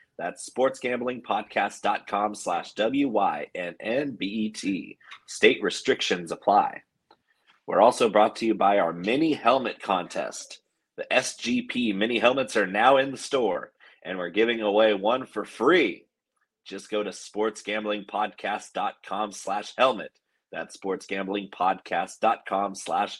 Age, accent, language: 30-49, American, English